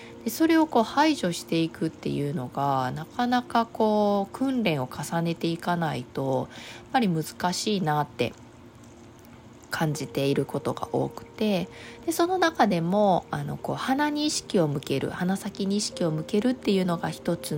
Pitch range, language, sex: 140-215 Hz, Japanese, female